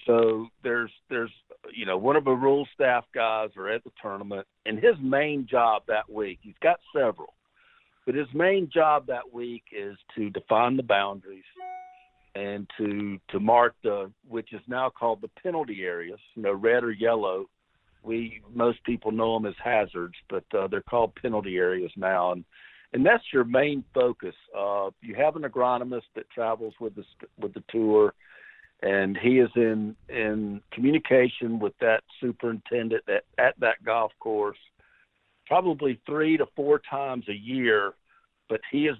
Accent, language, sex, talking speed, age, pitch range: American, English, male, 165 wpm, 50-69, 105-125 Hz